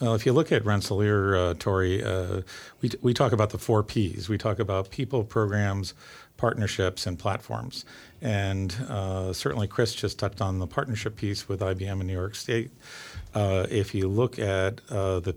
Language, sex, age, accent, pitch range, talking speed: English, male, 50-69, American, 95-115 Hz, 185 wpm